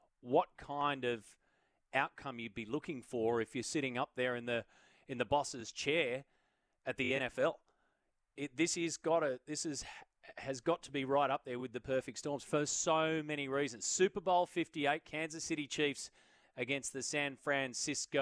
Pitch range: 130-165 Hz